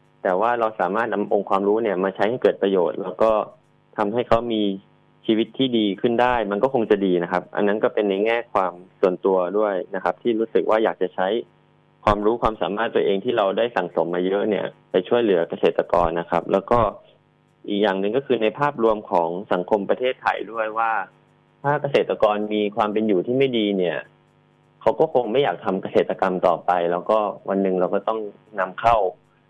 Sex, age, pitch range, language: male, 20-39, 95-115 Hz, English